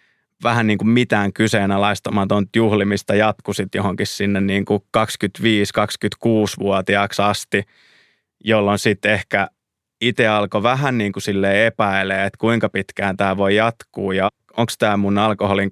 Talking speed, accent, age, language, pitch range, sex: 120 wpm, native, 20-39, Finnish, 95-110 Hz, male